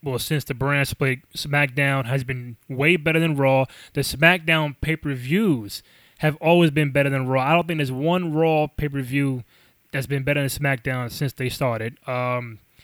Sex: male